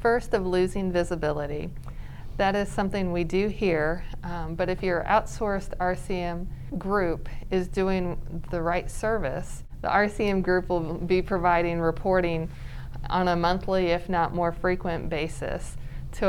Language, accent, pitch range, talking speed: English, American, 160-185 Hz, 140 wpm